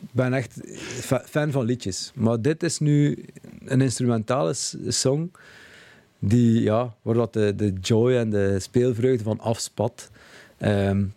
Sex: male